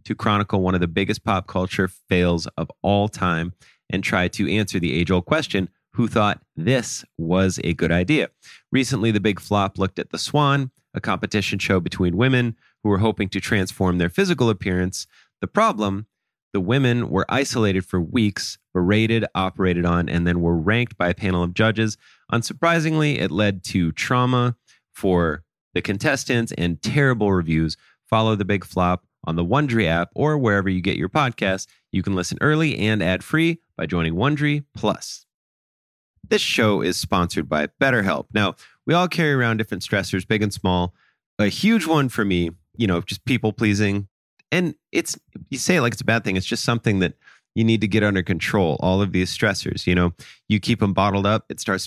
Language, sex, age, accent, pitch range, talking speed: English, male, 30-49, American, 90-120 Hz, 185 wpm